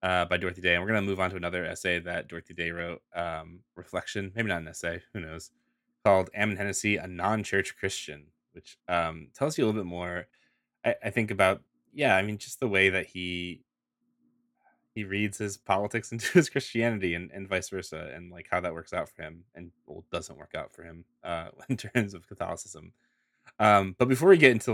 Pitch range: 85-110 Hz